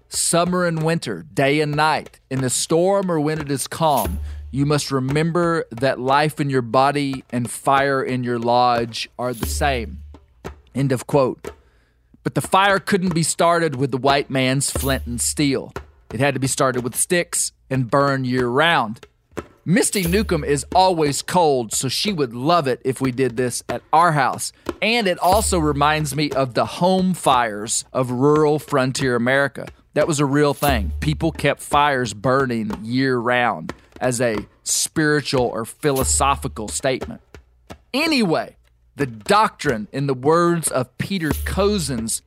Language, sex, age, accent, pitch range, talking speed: English, male, 40-59, American, 125-155 Hz, 160 wpm